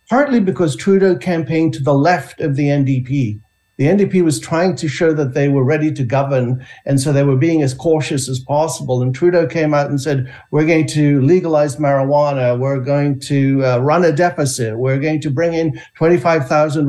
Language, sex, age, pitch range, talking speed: English, male, 60-79, 140-185 Hz, 195 wpm